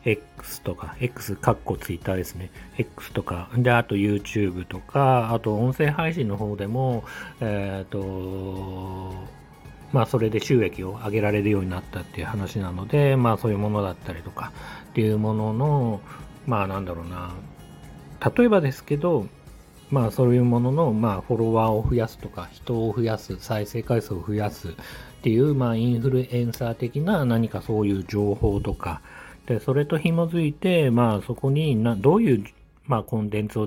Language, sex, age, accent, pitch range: Japanese, male, 40-59, native, 100-125 Hz